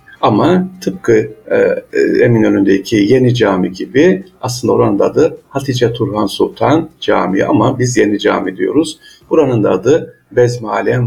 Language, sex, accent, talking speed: Turkish, male, native, 130 wpm